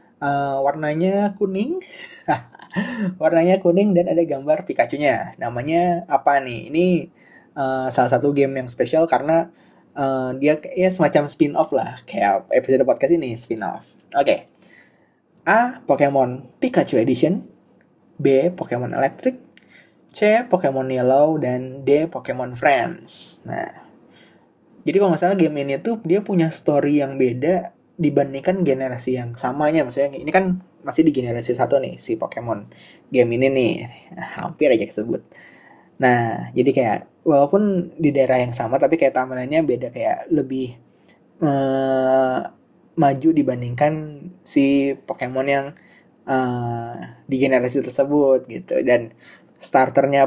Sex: male